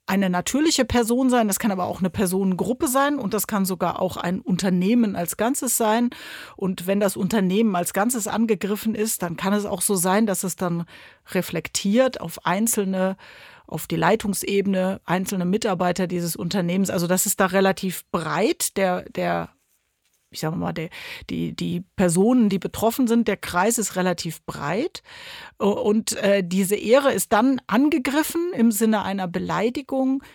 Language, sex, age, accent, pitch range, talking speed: German, female, 40-59, German, 190-235 Hz, 160 wpm